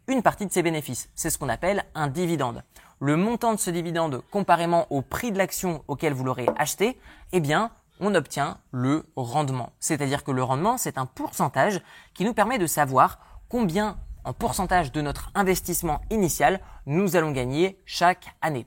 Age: 20-39